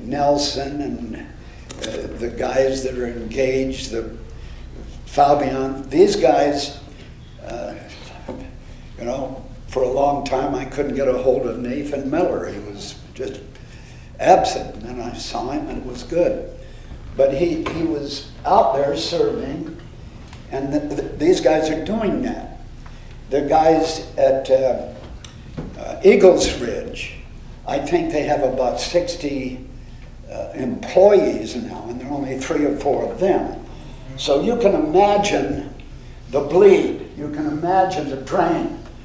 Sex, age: male, 60-79